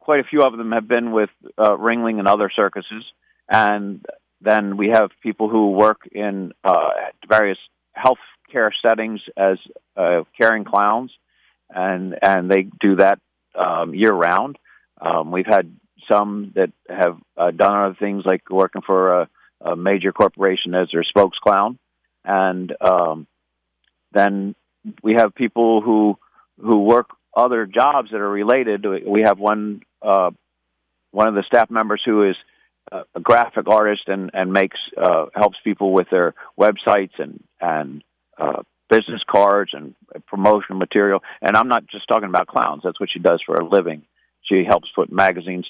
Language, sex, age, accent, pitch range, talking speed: English, male, 50-69, American, 95-110 Hz, 160 wpm